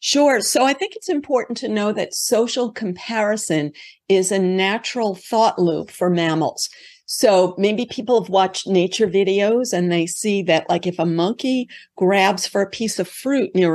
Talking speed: 175 wpm